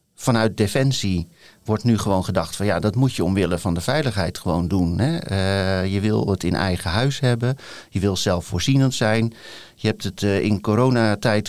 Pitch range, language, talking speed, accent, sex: 95-115 Hz, Dutch, 190 wpm, Dutch, male